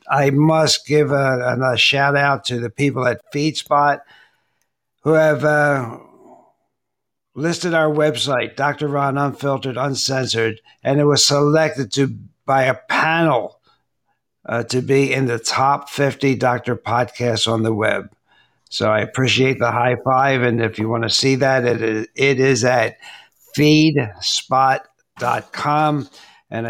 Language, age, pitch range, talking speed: English, 60-79, 125-150 Hz, 140 wpm